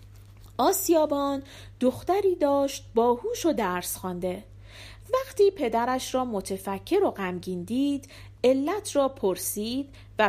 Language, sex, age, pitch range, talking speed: Persian, female, 40-59, 195-295 Hz, 105 wpm